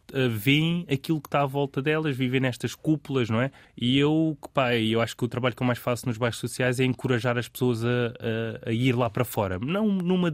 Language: Portuguese